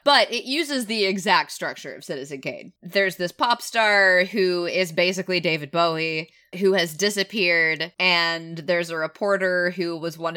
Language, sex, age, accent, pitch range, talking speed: English, female, 20-39, American, 160-200 Hz, 160 wpm